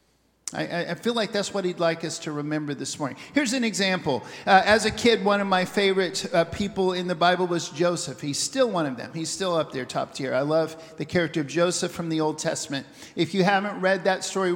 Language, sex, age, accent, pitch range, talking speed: English, male, 50-69, American, 165-210 Hz, 235 wpm